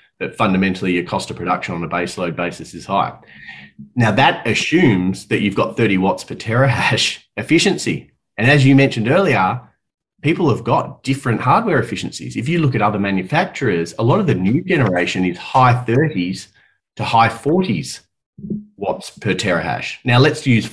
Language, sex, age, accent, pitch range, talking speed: English, male, 30-49, Australian, 100-135 Hz, 170 wpm